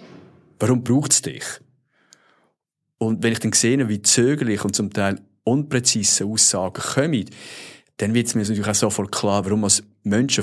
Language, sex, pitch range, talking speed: German, male, 105-130 Hz, 160 wpm